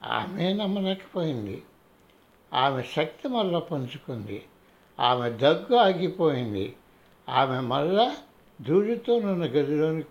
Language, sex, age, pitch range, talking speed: Telugu, male, 60-79, 135-195 Hz, 85 wpm